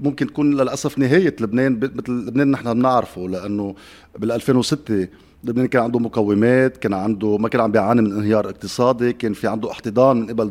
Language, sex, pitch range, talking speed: Arabic, male, 105-135 Hz, 175 wpm